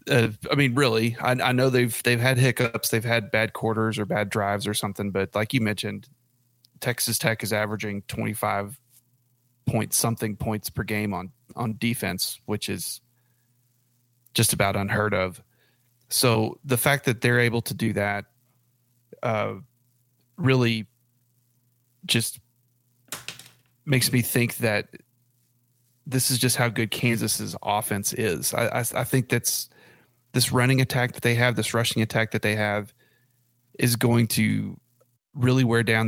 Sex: male